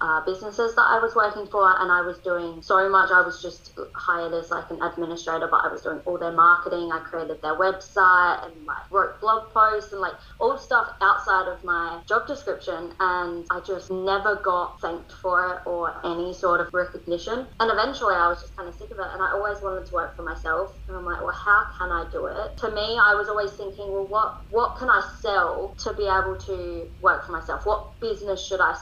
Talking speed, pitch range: 225 wpm, 175-200 Hz